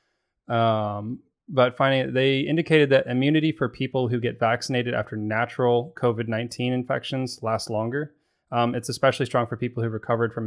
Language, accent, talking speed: English, American, 155 wpm